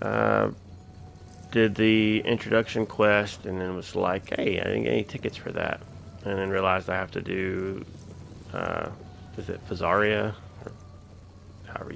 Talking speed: 145 wpm